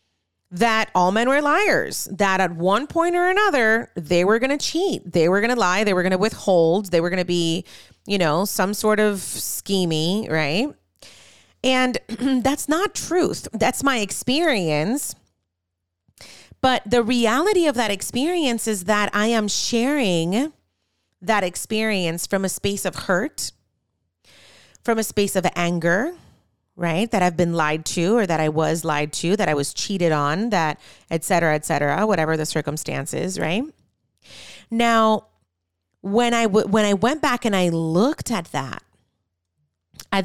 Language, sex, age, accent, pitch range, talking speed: English, female, 30-49, American, 160-235 Hz, 160 wpm